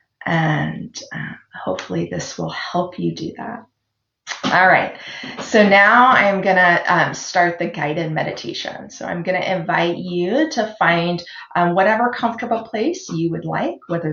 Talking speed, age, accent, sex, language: 150 wpm, 30-49, American, female, English